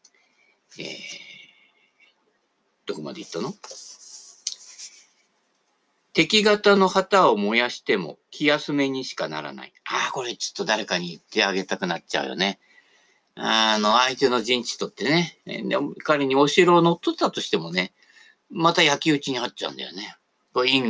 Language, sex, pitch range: Japanese, male, 135-200 Hz